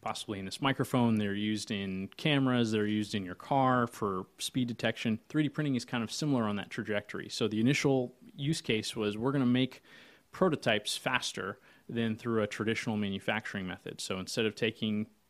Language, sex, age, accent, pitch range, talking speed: English, male, 30-49, American, 110-130 Hz, 185 wpm